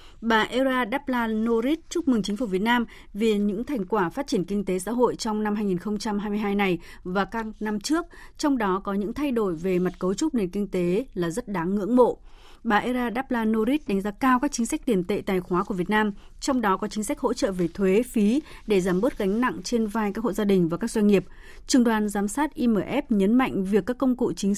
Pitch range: 195-250 Hz